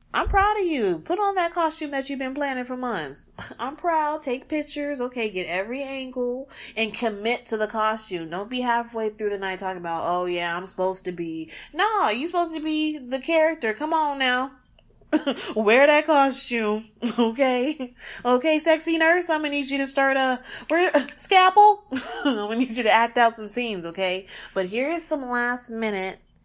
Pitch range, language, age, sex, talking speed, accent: 190-285 Hz, English, 20-39, female, 190 wpm, American